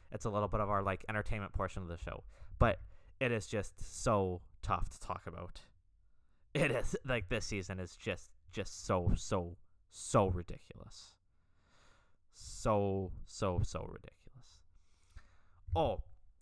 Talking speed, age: 140 wpm, 20-39